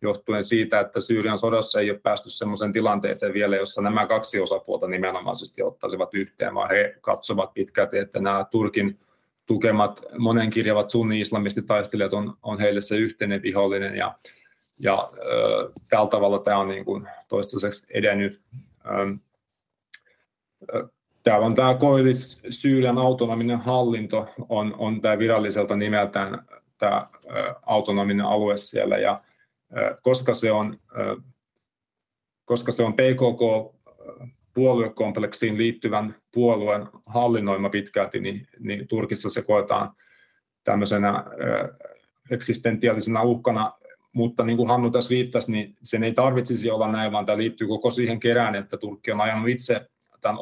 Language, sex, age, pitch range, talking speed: Finnish, male, 30-49, 105-120 Hz, 120 wpm